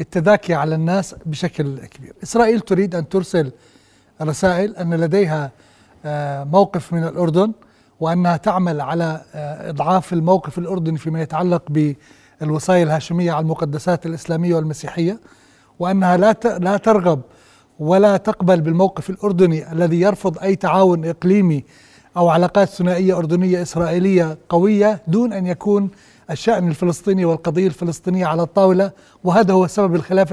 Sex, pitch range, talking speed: male, 170-210 Hz, 120 wpm